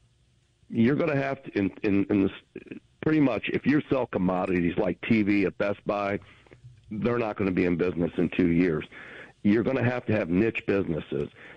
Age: 60-79